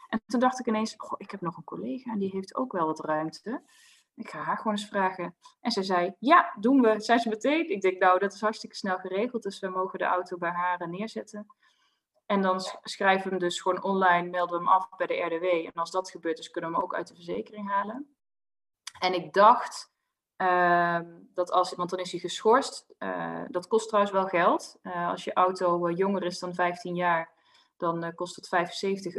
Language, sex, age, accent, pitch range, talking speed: Dutch, female, 20-39, Dutch, 175-220 Hz, 220 wpm